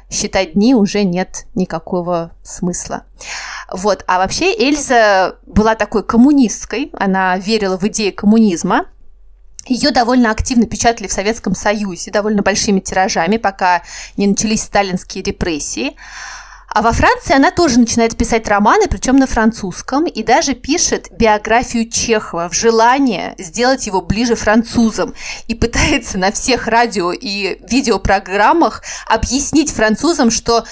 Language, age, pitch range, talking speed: Russian, 20-39, 200-240 Hz, 125 wpm